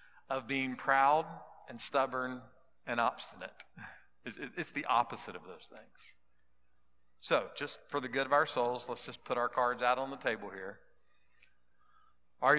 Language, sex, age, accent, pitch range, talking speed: English, male, 50-69, American, 115-150 Hz, 155 wpm